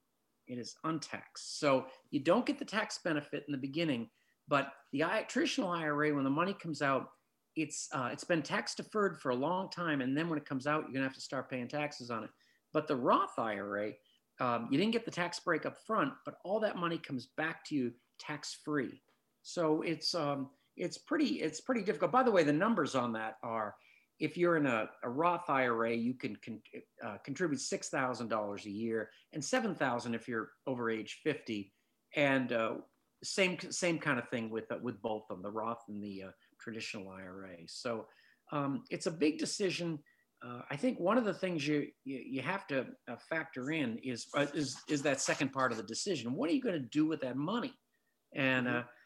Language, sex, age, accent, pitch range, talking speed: English, male, 50-69, American, 120-175 Hz, 205 wpm